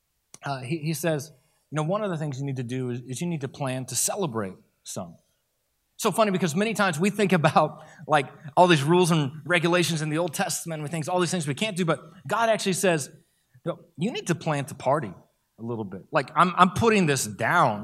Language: English